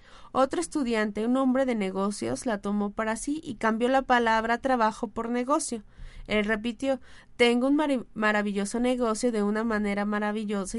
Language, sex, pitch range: Spanish, female, 210-250 Hz